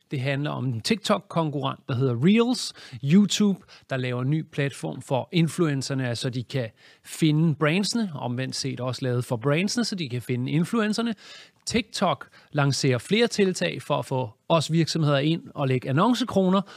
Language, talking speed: Danish, 165 wpm